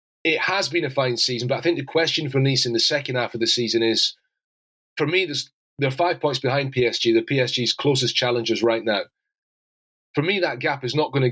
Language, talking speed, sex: English, 235 wpm, male